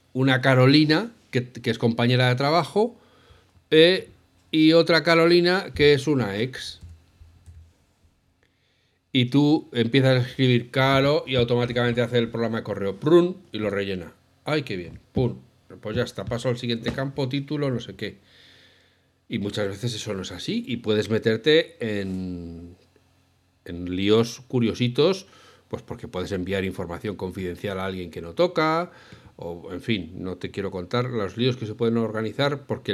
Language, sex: Spanish, male